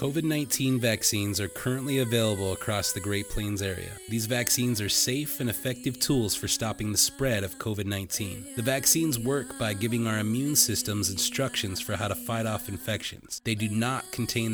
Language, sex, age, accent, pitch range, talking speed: English, male, 30-49, American, 105-130 Hz, 175 wpm